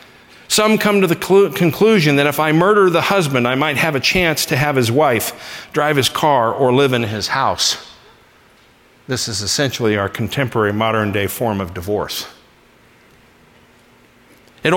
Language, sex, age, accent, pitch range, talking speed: English, male, 50-69, American, 120-165 Hz, 160 wpm